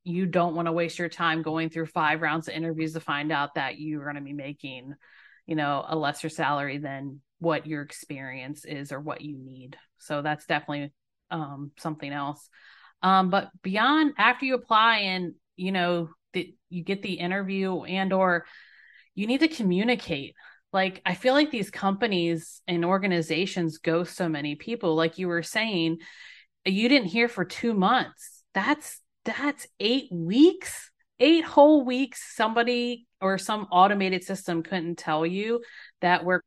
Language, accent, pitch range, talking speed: English, American, 160-220 Hz, 165 wpm